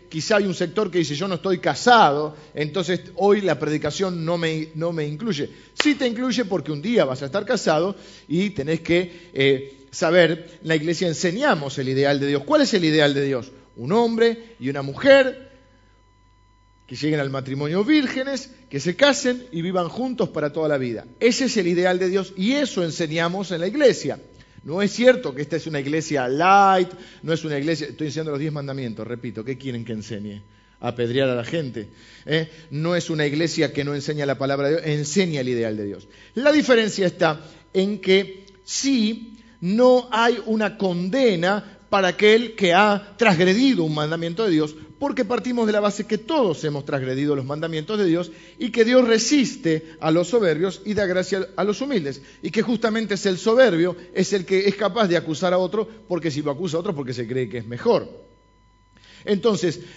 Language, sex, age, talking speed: Spanish, male, 40-59, 195 wpm